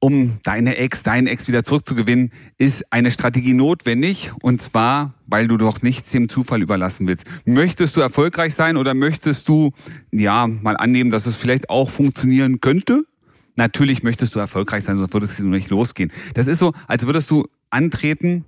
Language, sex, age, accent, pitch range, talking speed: German, male, 30-49, German, 115-145 Hz, 175 wpm